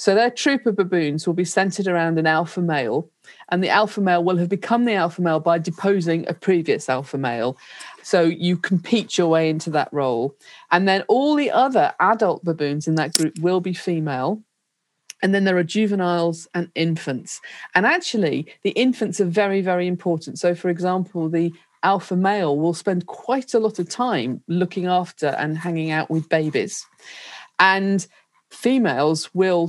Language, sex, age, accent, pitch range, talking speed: English, female, 40-59, British, 160-200 Hz, 175 wpm